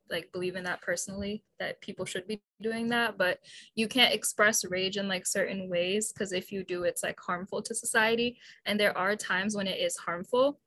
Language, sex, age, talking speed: English, female, 10-29, 210 wpm